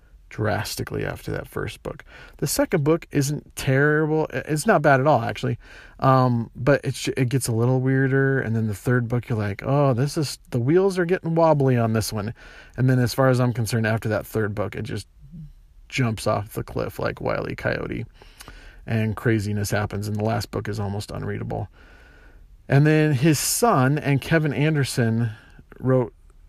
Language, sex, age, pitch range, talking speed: English, male, 40-59, 110-145 Hz, 185 wpm